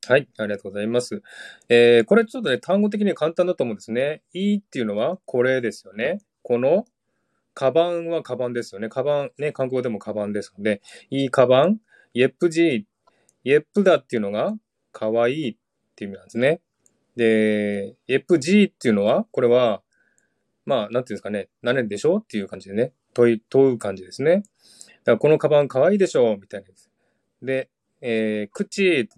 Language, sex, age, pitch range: Japanese, male, 20-39, 110-175 Hz